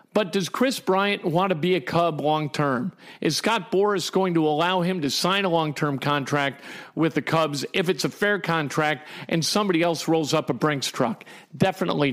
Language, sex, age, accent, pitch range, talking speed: English, male, 50-69, American, 160-205 Hz, 195 wpm